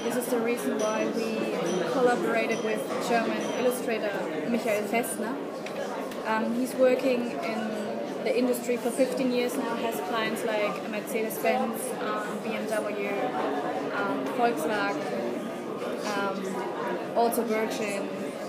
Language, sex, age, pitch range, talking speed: English, female, 20-39, 230-265 Hz, 105 wpm